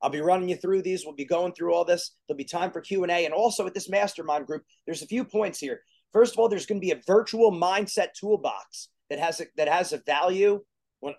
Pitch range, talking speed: 165-210 Hz, 245 wpm